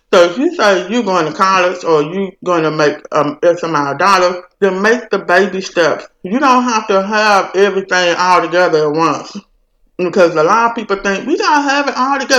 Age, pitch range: 50-69, 165-225 Hz